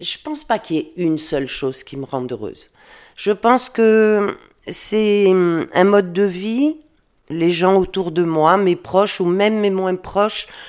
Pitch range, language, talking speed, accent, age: 155-200 Hz, French, 185 wpm, French, 40-59